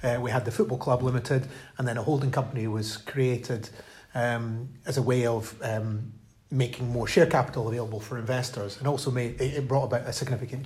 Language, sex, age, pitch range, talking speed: English, male, 30-49, 120-135 Hz, 195 wpm